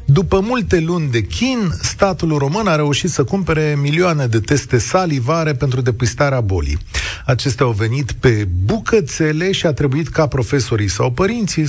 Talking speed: 155 wpm